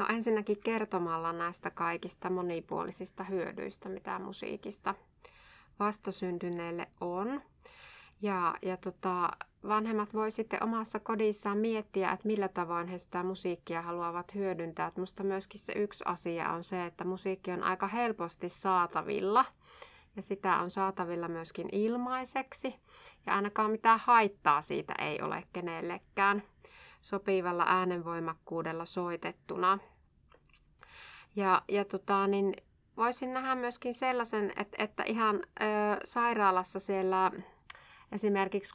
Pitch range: 175-210 Hz